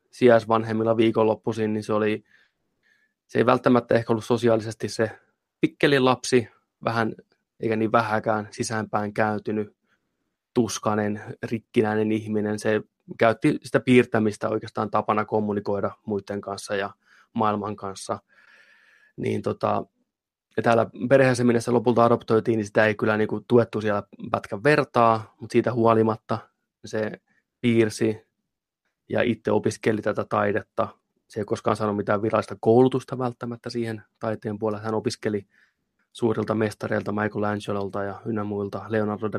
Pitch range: 105-115 Hz